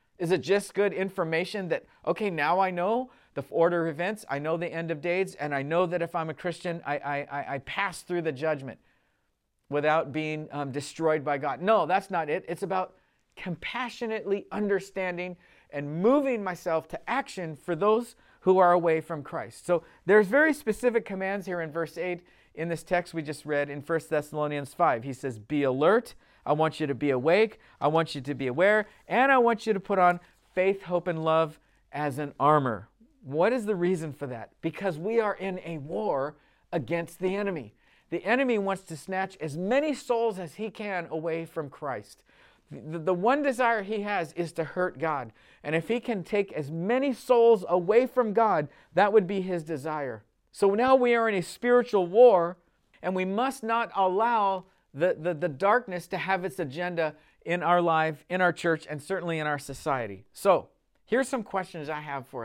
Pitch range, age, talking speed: 155-200 Hz, 40-59, 195 wpm